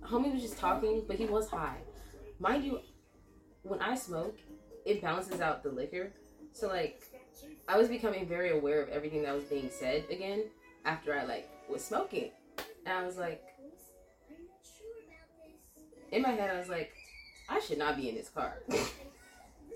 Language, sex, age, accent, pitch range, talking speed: English, female, 20-39, American, 195-320 Hz, 165 wpm